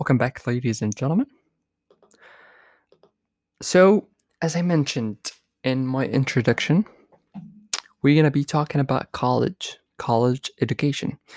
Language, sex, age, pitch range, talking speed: English, male, 20-39, 120-160 Hz, 105 wpm